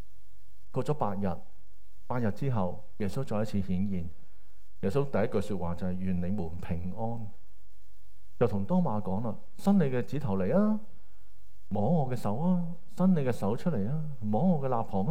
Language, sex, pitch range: Chinese, male, 95-125 Hz